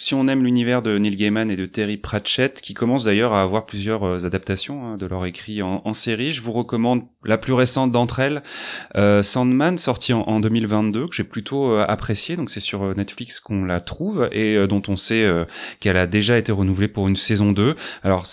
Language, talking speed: French, 220 wpm